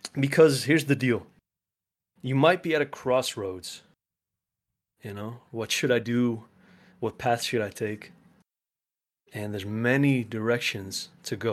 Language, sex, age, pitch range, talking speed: English, male, 20-39, 110-140 Hz, 140 wpm